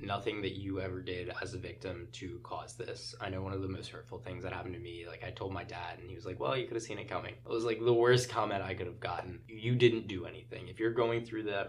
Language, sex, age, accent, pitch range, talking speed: English, male, 20-39, American, 95-115 Hz, 300 wpm